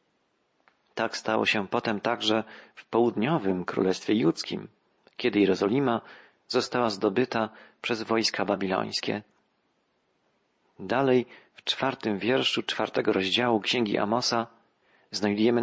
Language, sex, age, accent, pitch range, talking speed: Polish, male, 40-59, native, 105-125 Hz, 95 wpm